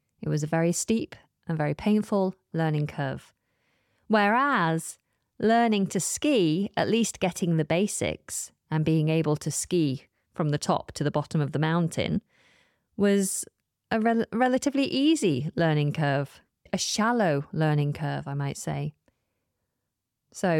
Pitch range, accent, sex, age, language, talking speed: 140-200 Hz, British, female, 30-49, English, 135 wpm